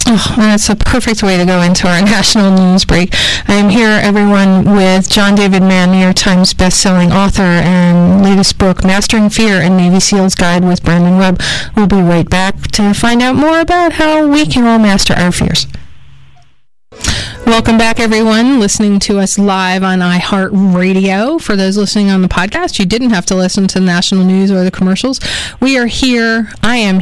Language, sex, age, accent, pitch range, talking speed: English, female, 30-49, American, 180-210 Hz, 190 wpm